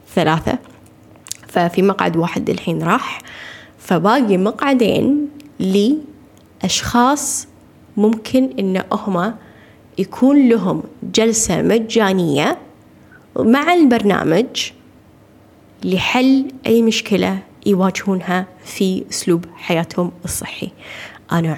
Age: 10-29